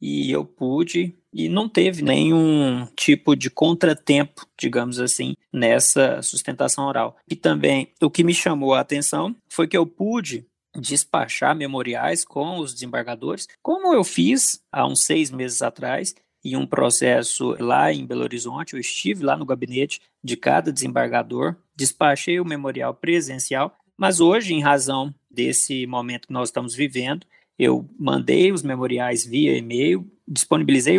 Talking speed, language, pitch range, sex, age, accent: 145 wpm, Portuguese, 125-170 Hz, male, 20-39, Brazilian